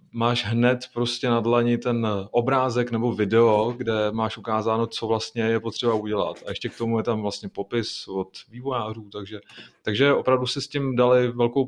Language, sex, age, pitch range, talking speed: Czech, male, 20-39, 105-120 Hz, 180 wpm